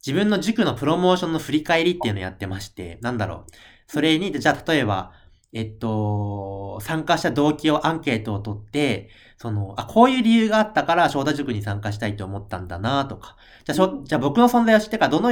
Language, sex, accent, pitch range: Japanese, male, native, 105-170 Hz